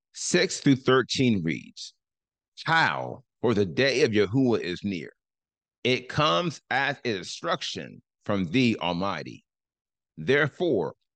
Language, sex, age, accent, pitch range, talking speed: English, male, 40-59, American, 110-150 Hz, 95 wpm